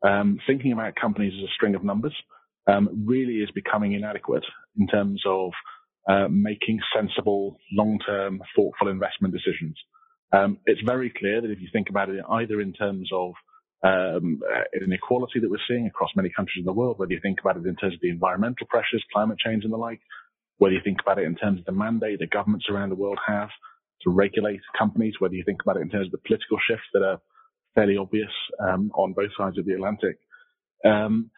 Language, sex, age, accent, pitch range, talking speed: English, male, 30-49, British, 100-115 Hz, 205 wpm